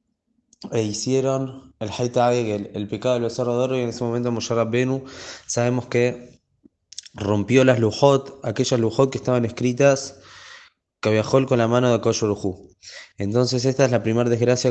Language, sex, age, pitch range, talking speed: Spanish, male, 20-39, 110-130 Hz, 155 wpm